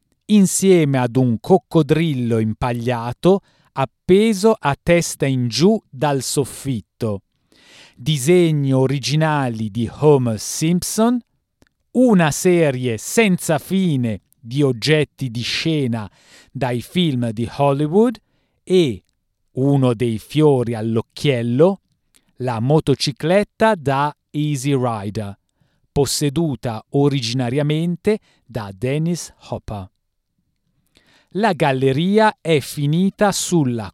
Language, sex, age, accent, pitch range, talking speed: Italian, male, 40-59, native, 125-175 Hz, 85 wpm